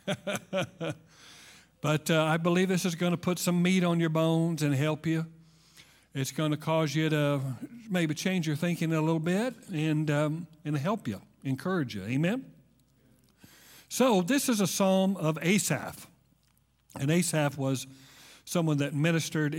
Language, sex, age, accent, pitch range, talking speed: English, male, 50-69, American, 145-170 Hz, 155 wpm